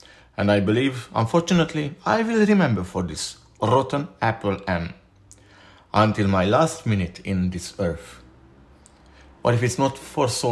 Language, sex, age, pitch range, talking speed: English, male, 50-69, 95-140 Hz, 145 wpm